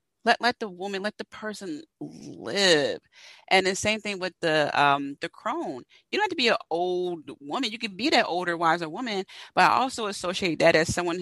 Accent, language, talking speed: American, English, 210 wpm